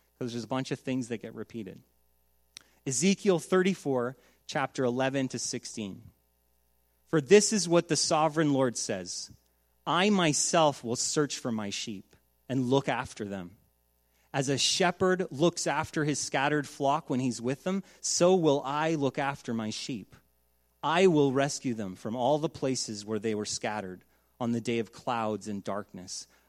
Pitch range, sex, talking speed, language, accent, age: 105-150 Hz, male, 165 wpm, English, American, 30-49